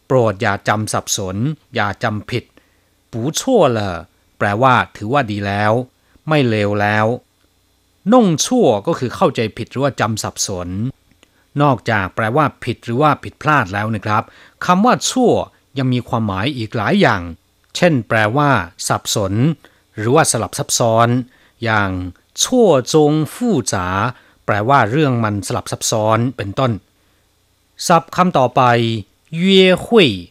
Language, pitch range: Thai, 105-145 Hz